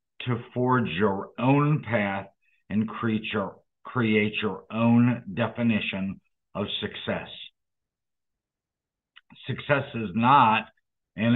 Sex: male